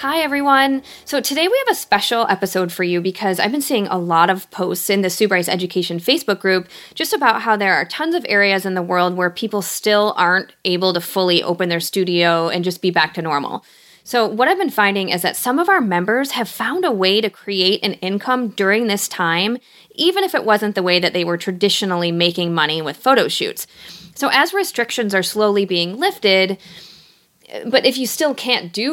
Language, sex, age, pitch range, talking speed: English, female, 30-49, 185-240 Hz, 210 wpm